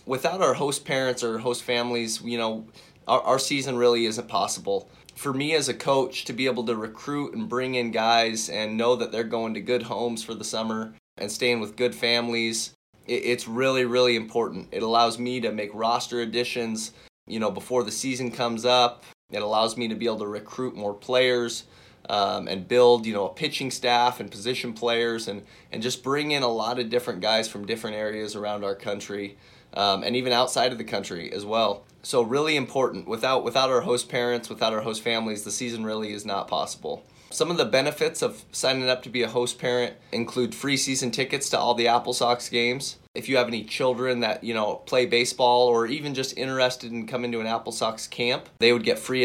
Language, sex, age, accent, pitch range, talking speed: English, male, 20-39, American, 110-125 Hz, 210 wpm